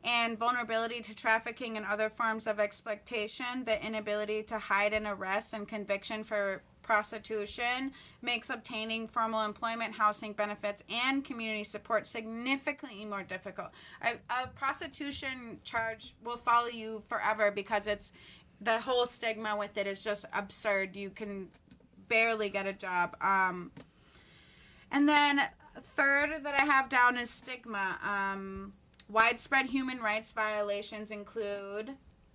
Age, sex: 20-39, female